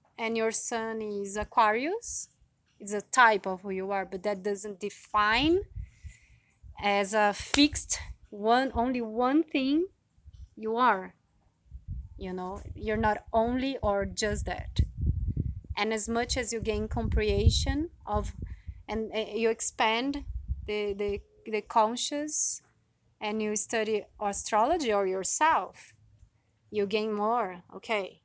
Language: English